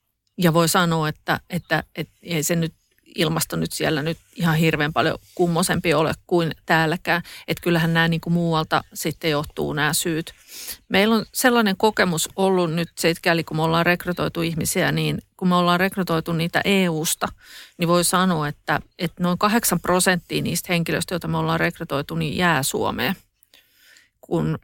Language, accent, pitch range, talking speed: Finnish, native, 160-185 Hz, 165 wpm